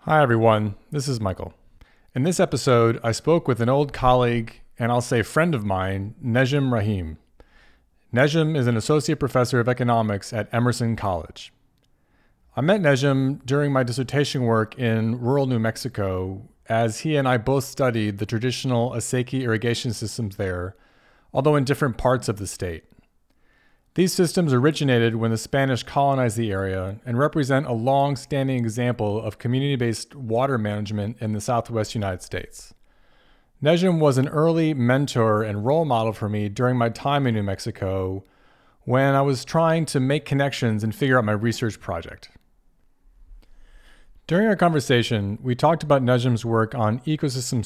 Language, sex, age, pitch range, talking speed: English, male, 40-59, 110-135 Hz, 155 wpm